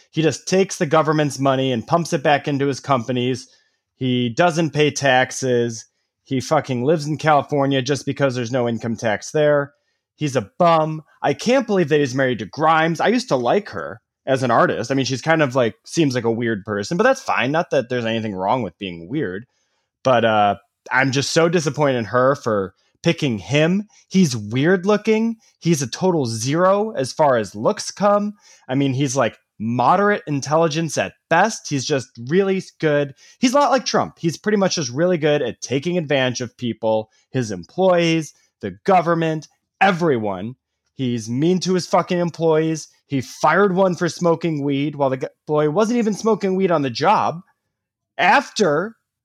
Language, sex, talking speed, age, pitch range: English, male, 180 wpm, 20-39, 130-170 Hz